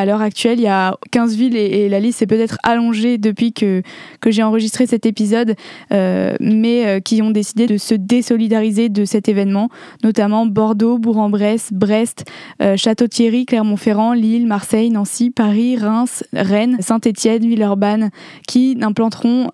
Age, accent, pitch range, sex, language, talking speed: 20-39, French, 210-235 Hz, female, French, 155 wpm